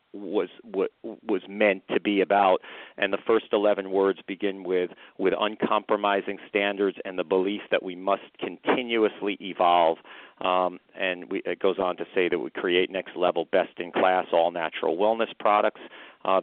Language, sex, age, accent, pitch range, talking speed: English, male, 40-59, American, 95-105 Hz, 155 wpm